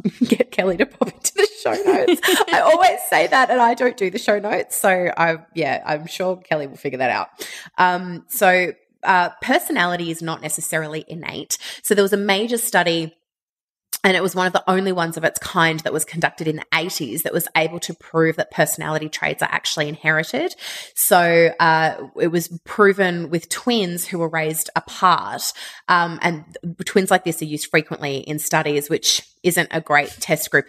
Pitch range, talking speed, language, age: 155-190 Hz, 190 wpm, English, 20-39